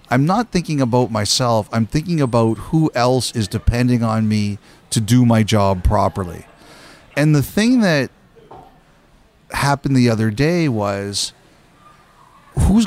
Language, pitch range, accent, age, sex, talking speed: English, 120-150 Hz, American, 40-59, male, 135 wpm